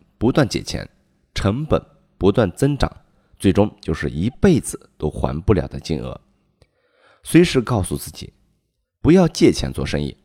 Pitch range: 85-135 Hz